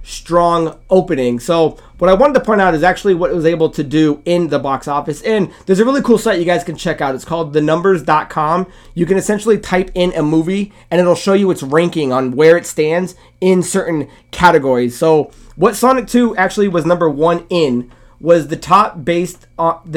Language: English